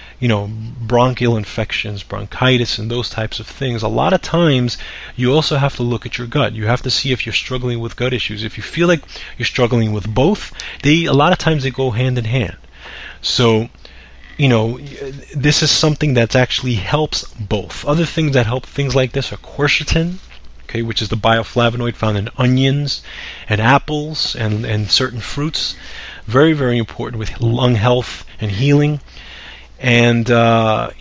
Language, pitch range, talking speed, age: English, 110-135 Hz, 180 wpm, 30-49